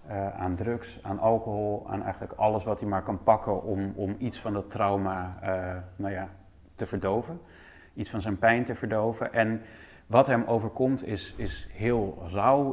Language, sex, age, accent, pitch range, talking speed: Dutch, male, 30-49, Dutch, 100-125 Hz, 170 wpm